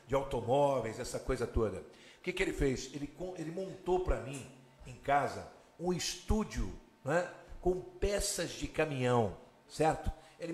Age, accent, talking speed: 60-79, Brazilian, 150 wpm